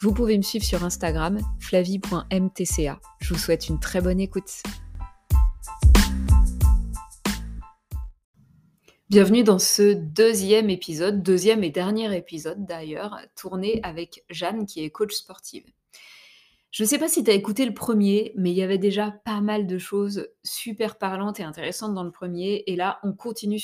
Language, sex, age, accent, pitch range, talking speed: French, female, 20-39, French, 180-220 Hz, 155 wpm